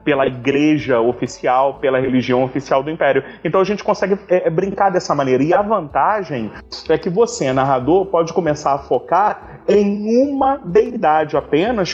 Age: 30-49